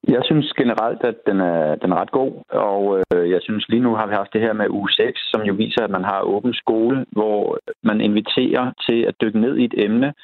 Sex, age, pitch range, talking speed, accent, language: male, 30-49, 95-110 Hz, 240 wpm, native, Danish